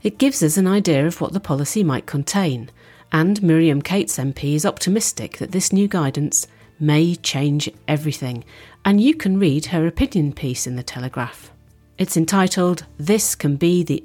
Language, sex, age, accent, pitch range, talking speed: English, female, 40-59, British, 130-175 Hz, 170 wpm